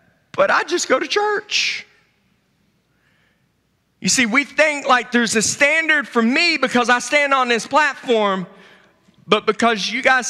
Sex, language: male, English